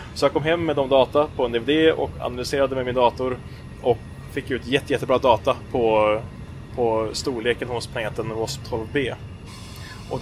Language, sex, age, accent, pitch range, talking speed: Swedish, male, 20-39, Norwegian, 115-130 Hz, 175 wpm